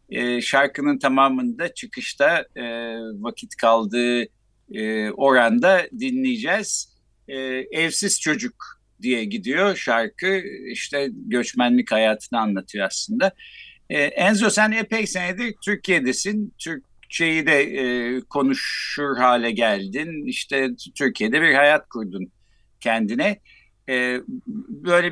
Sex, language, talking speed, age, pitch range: male, Turkish, 80 wpm, 60-79, 130-210 Hz